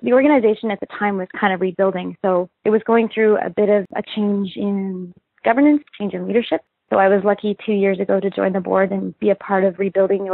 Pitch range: 190-225 Hz